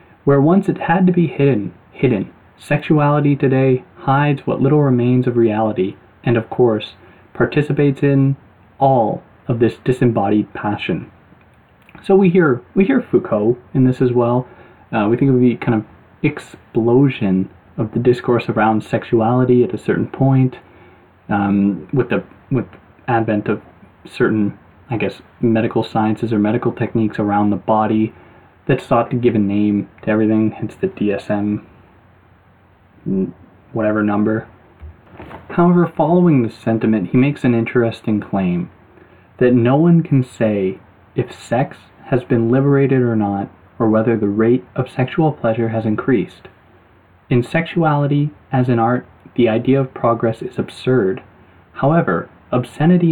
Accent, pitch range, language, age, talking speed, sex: American, 105-130 Hz, English, 20-39, 140 wpm, male